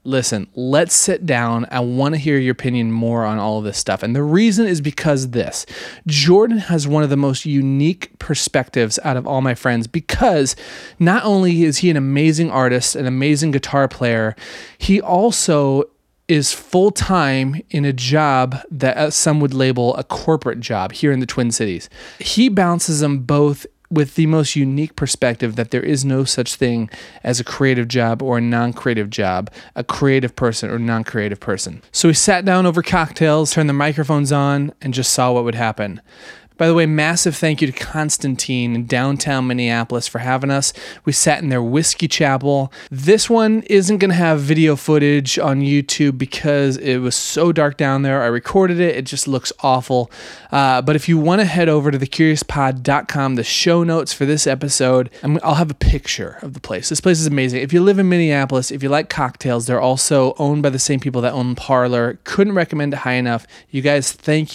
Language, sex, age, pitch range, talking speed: English, male, 30-49, 125-155 Hz, 195 wpm